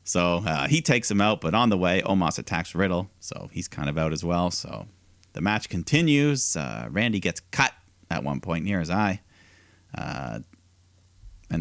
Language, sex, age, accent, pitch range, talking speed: English, male, 30-49, American, 90-120 Hz, 185 wpm